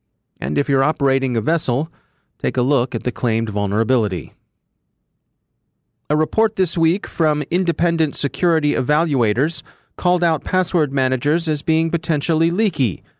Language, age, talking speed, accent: English, 30-49, 130 wpm, American